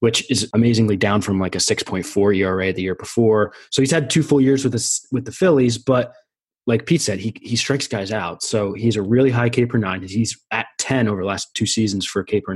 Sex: male